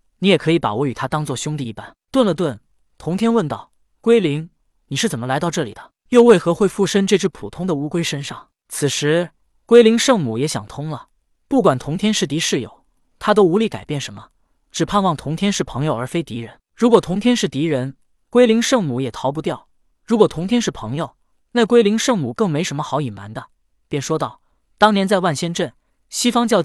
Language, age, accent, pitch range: Chinese, 20-39, native, 145-195 Hz